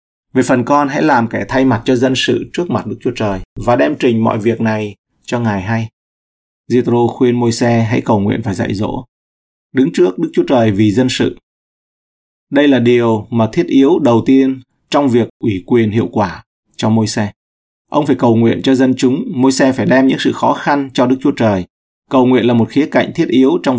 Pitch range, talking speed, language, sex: 105-130 Hz, 220 wpm, Vietnamese, male